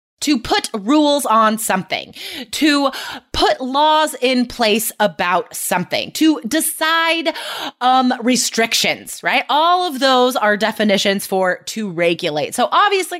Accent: American